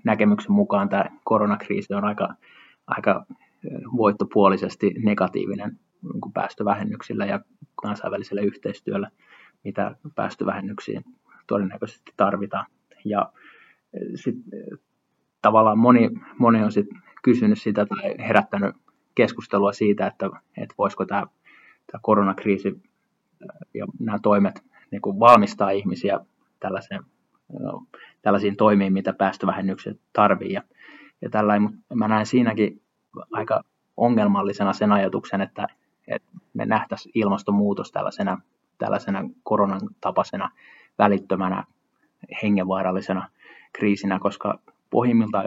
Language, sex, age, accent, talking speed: Finnish, male, 20-39, native, 85 wpm